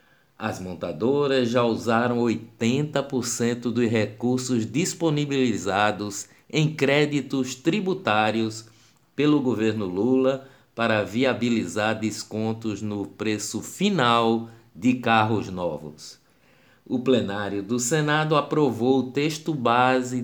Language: Portuguese